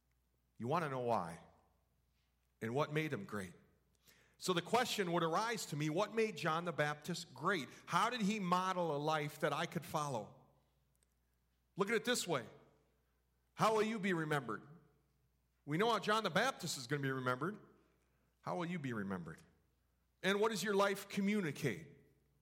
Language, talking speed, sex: English, 175 wpm, male